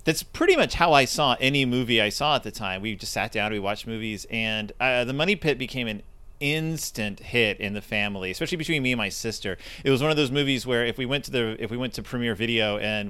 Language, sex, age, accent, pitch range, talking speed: English, male, 30-49, American, 115-155 Hz, 260 wpm